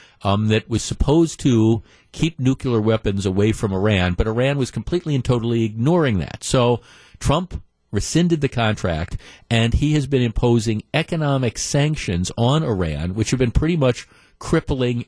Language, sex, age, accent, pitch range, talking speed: English, male, 50-69, American, 105-130 Hz, 155 wpm